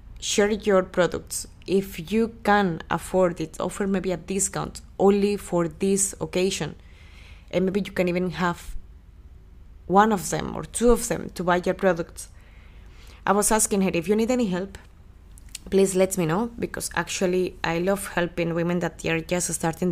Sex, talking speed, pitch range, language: female, 170 wpm, 165-200 Hz, English